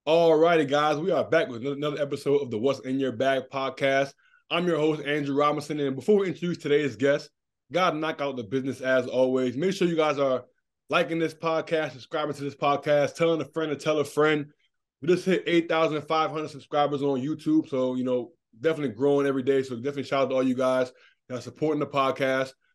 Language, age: English, 20-39